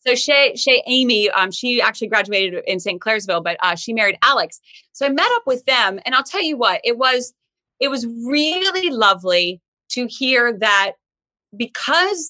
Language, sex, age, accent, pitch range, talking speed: English, female, 30-49, American, 175-235 Hz, 175 wpm